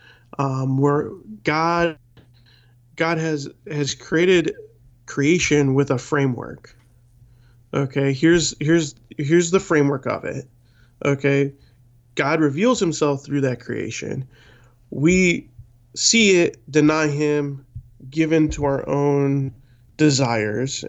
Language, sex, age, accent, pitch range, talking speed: English, male, 20-39, American, 125-150 Hz, 105 wpm